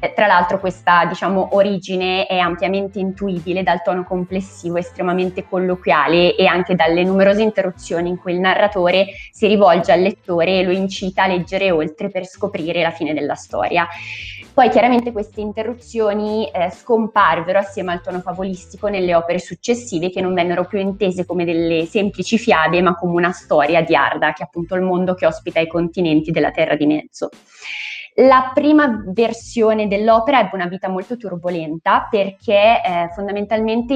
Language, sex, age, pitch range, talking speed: Italian, female, 20-39, 175-210 Hz, 160 wpm